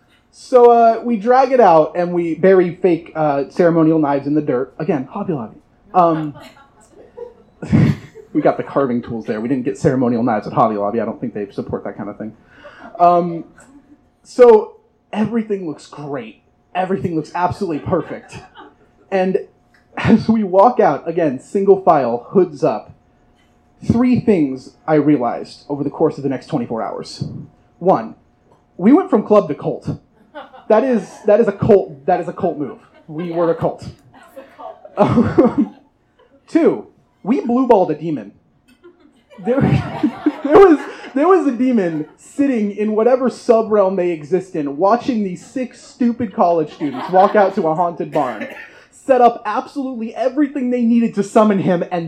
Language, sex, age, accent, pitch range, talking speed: English, male, 30-49, American, 165-250 Hz, 160 wpm